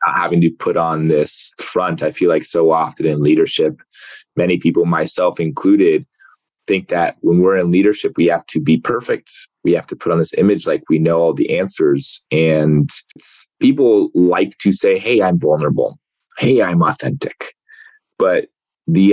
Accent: American